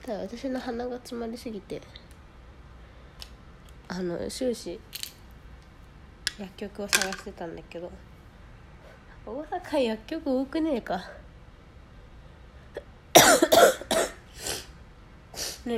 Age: 20-39